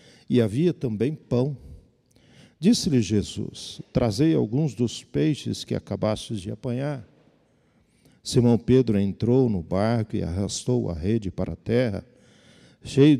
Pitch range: 105-140 Hz